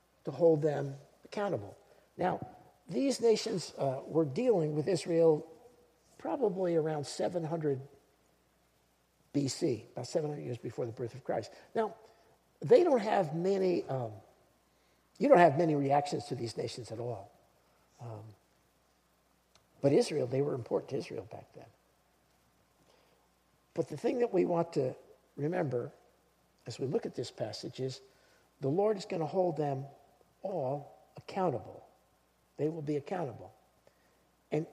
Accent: American